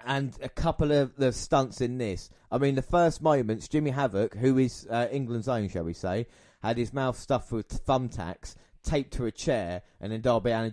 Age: 30-49